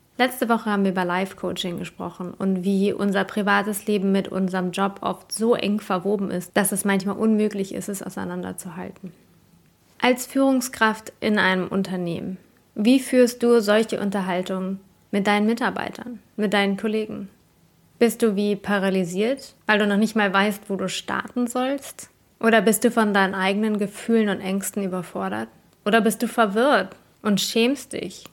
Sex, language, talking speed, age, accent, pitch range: female, English, 155 wpm, 20-39, German, 185-225 Hz